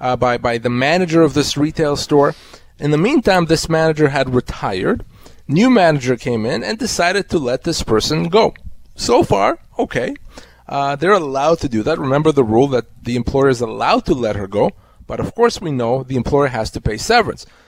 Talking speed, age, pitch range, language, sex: 200 wpm, 30-49, 125-160 Hz, English, male